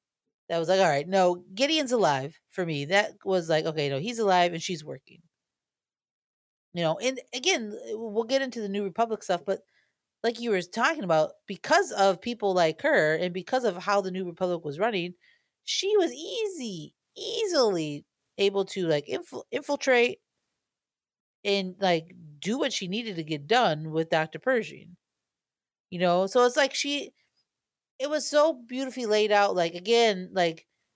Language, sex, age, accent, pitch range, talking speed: English, female, 40-59, American, 175-230 Hz, 165 wpm